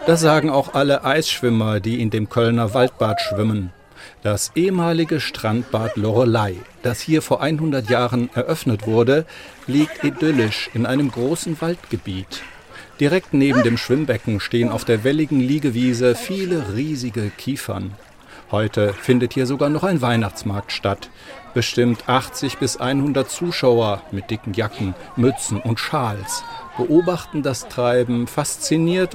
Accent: German